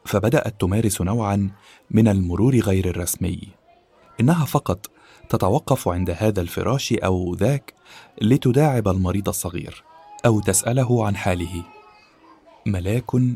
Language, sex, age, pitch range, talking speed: Arabic, male, 30-49, 95-120 Hz, 105 wpm